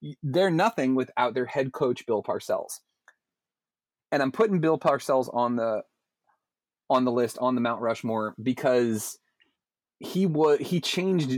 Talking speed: 140 wpm